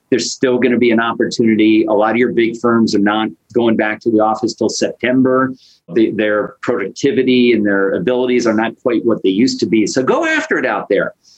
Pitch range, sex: 115-140 Hz, male